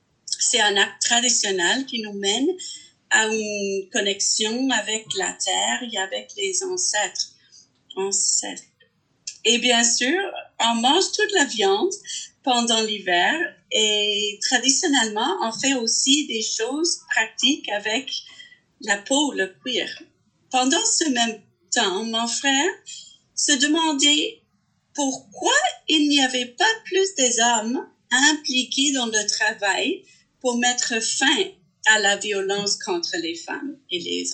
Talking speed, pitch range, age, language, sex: 120 wpm, 220-335 Hz, 40-59, French, female